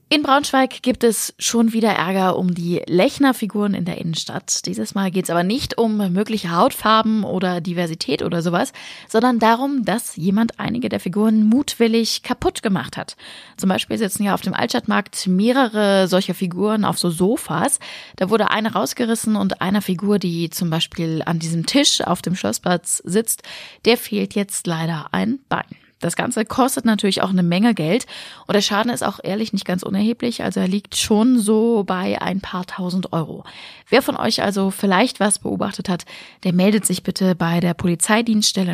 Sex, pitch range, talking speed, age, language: female, 175-225 Hz, 180 wpm, 20-39, German